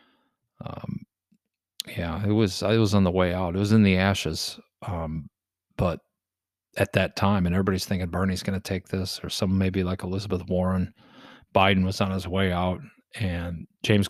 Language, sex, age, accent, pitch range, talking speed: English, male, 40-59, American, 90-105 Hz, 175 wpm